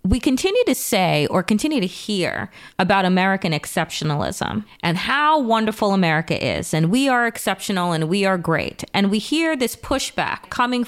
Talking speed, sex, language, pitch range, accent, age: 165 wpm, female, English, 175-230 Hz, American, 30-49